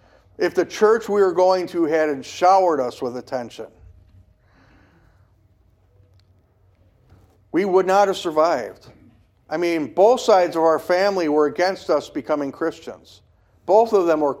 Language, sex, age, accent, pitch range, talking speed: English, male, 50-69, American, 135-195 Hz, 135 wpm